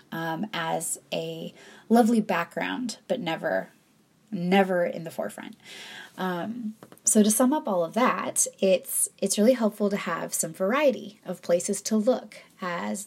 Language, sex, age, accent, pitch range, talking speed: English, female, 20-39, American, 175-220 Hz, 145 wpm